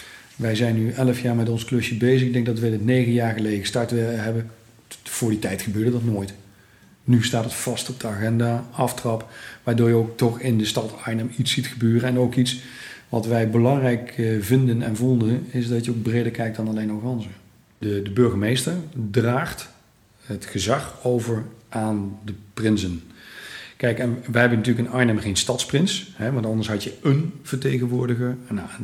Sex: male